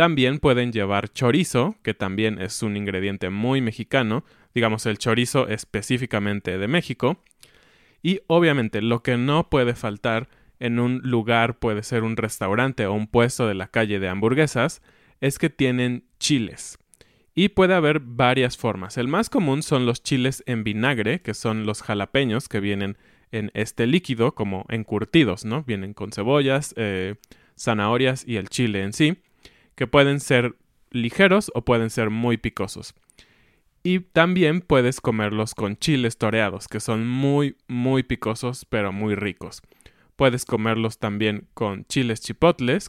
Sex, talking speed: male, 150 wpm